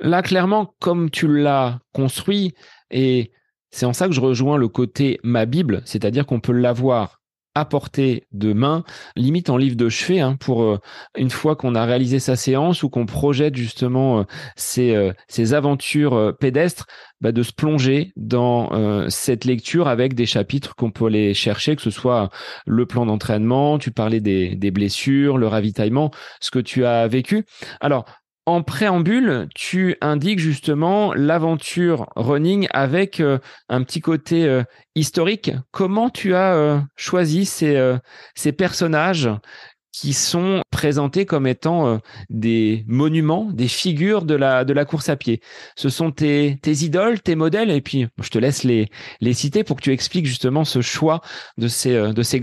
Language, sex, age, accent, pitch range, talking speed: French, male, 30-49, French, 120-160 Hz, 165 wpm